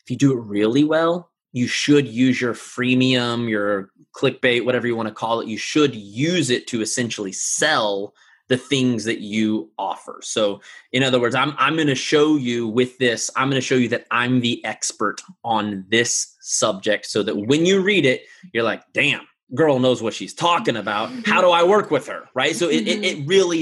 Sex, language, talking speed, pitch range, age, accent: male, English, 210 wpm, 115-155 Hz, 20-39, American